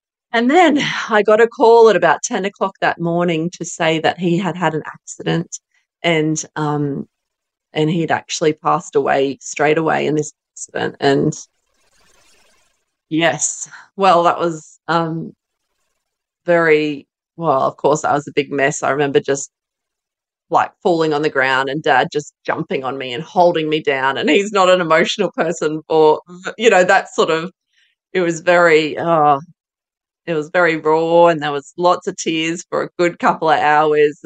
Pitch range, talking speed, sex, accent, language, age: 150-175 Hz, 170 wpm, female, Australian, English, 30-49